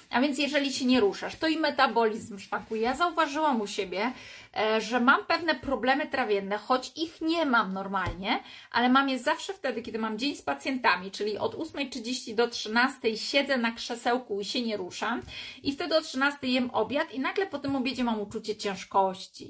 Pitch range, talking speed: 215-270 Hz, 185 wpm